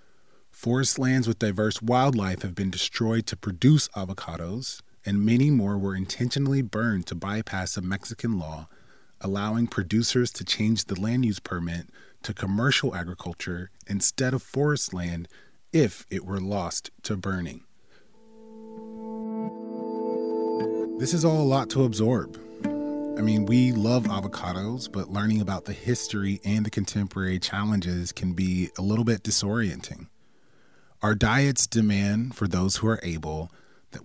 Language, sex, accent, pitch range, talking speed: English, male, American, 95-120 Hz, 140 wpm